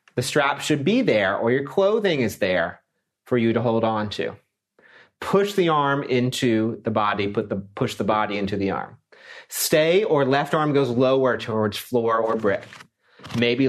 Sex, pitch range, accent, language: male, 105-140 Hz, American, English